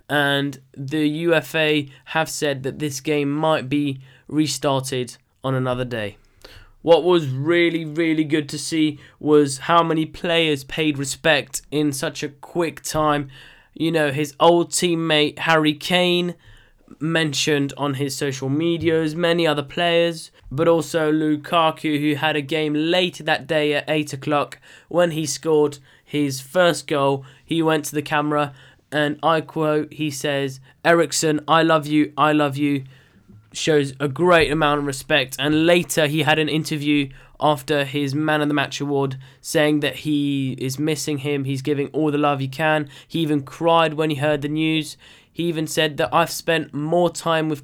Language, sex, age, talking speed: English, male, 10-29, 170 wpm